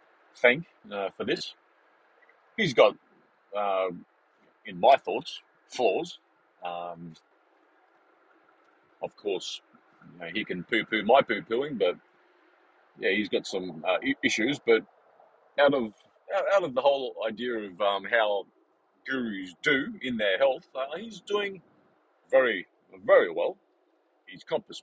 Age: 40-59